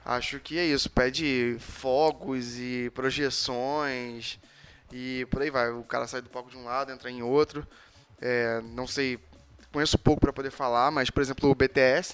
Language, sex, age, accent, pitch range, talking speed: Portuguese, male, 10-29, Brazilian, 125-150 Hz, 180 wpm